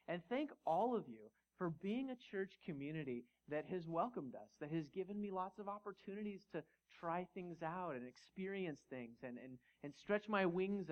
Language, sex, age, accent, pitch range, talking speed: English, male, 30-49, American, 130-195 Hz, 180 wpm